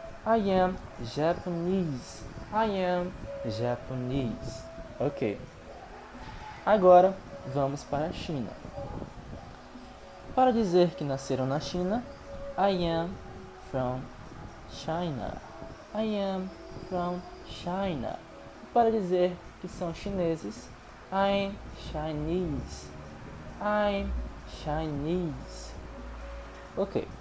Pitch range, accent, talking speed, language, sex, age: 130-195 Hz, Brazilian, 85 wpm, English, male, 20-39